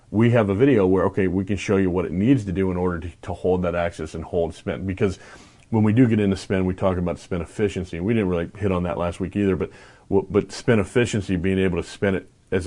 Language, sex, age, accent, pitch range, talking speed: English, male, 40-59, American, 90-105 Hz, 270 wpm